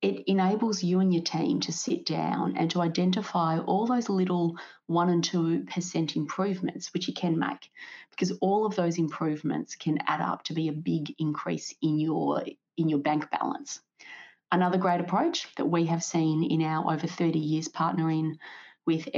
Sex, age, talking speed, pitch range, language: female, 30-49, 170 wpm, 160-190 Hz, English